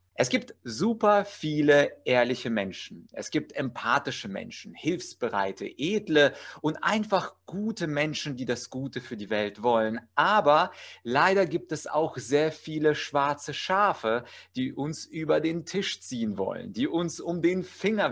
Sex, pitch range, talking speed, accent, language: male, 120-160 Hz, 145 wpm, German, German